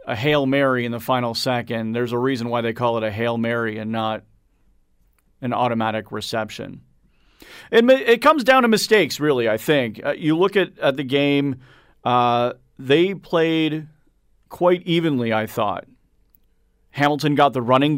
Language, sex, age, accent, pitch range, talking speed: English, male, 40-59, American, 120-160 Hz, 165 wpm